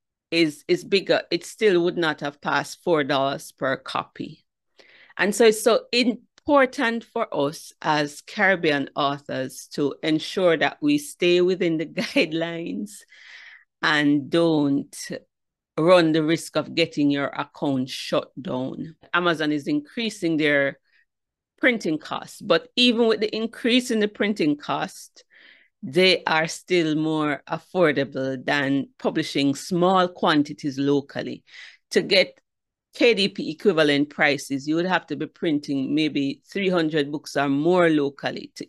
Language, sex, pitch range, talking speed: English, female, 145-215 Hz, 130 wpm